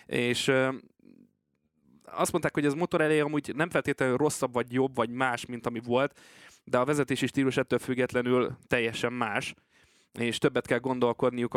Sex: male